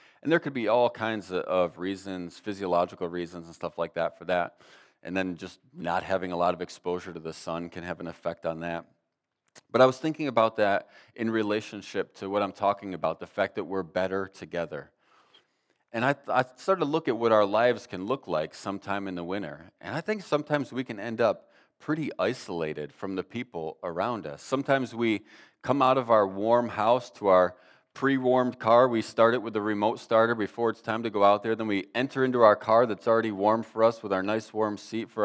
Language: English